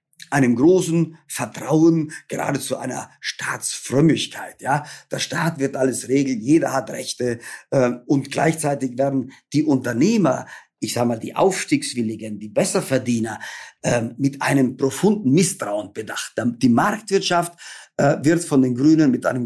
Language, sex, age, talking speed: German, male, 50-69, 135 wpm